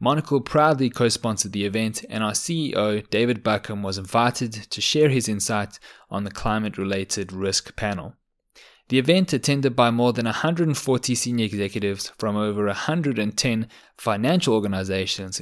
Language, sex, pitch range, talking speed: English, male, 100-125 Hz, 135 wpm